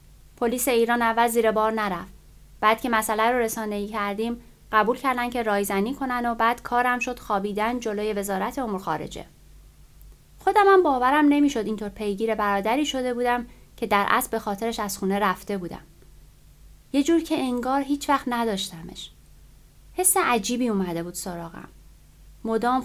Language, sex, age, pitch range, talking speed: Persian, female, 30-49, 205-255 Hz, 150 wpm